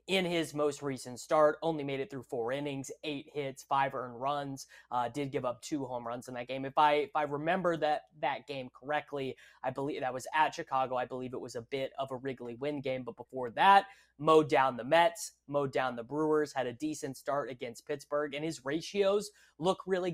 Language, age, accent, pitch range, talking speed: English, 20-39, American, 130-165 Hz, 220 wpm